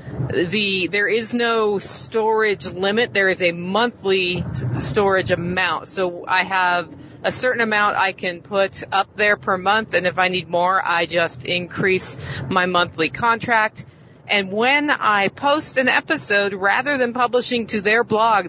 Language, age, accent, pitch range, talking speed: English, 40-59, American, 175-210 Hz, 155 wpm